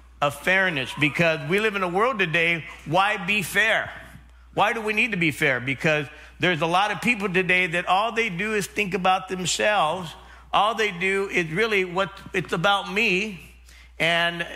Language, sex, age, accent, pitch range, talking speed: English, male, 50-69, American, 150-200 Hz, 180 wpm